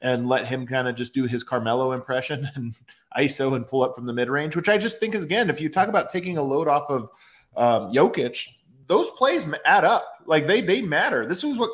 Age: 30-49